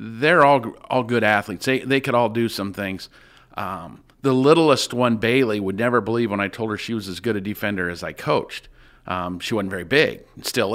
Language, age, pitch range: English, 50-69, 105-130 Hz